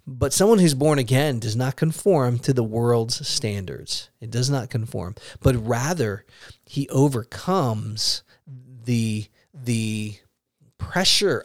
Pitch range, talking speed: 115-140 Hz, 125 wpm